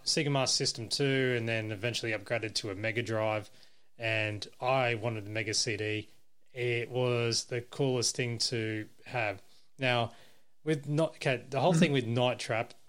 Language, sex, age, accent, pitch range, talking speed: English, male, 20-39, Australian, 115-135 Hz, 165 wpm